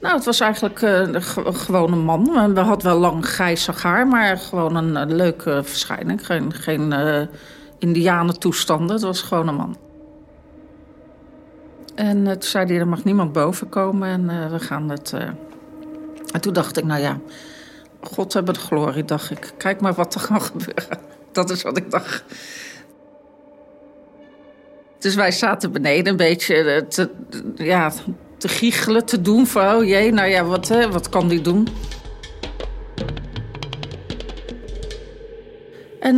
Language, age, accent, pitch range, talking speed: Dutch, 40-59, Dutch, 175-240 Hz, 150 wpm